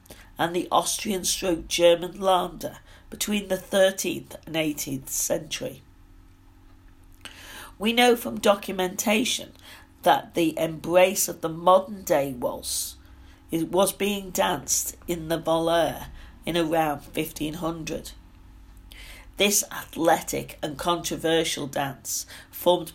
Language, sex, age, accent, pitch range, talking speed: English, female, 50-69, British, 125-185 Hz, 100 wpm